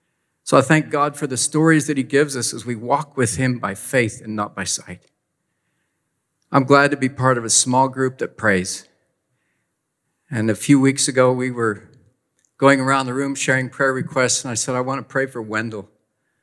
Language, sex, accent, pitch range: English, male, American, 120-135 Hz